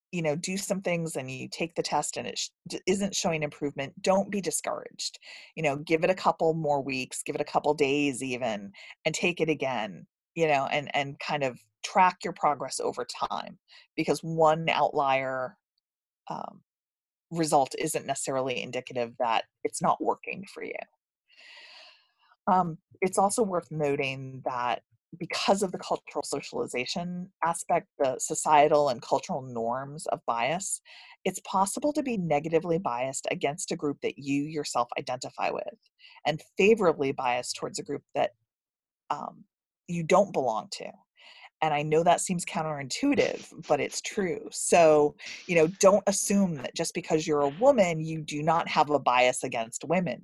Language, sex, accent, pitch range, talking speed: English, female, American, 140-185 Hz, 160 wpm